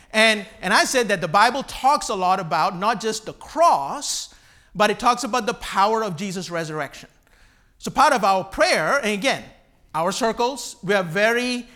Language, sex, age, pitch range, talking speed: English, male, 50-69, 190-240 Hz, 185 wpm